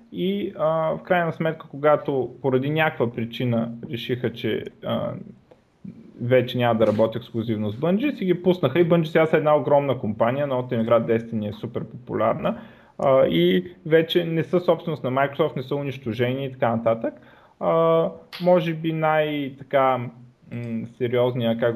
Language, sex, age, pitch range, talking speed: Bulgarian, male, 30-49, 115-150 Hz, 155 wpm